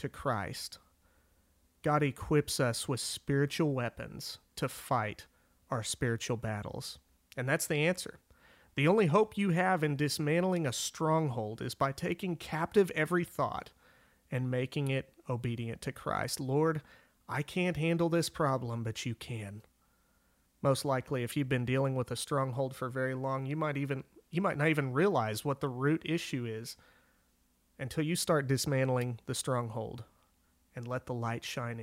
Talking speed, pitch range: 155 wpm, 120-155 Hz